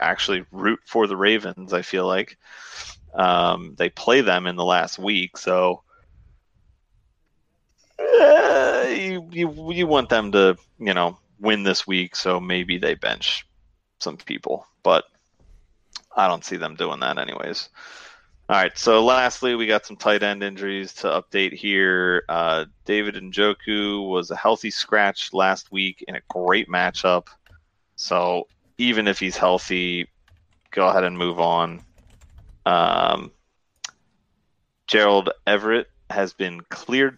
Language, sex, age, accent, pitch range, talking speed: English, male, 30-49, American, 90-105 Hz, 135 wpm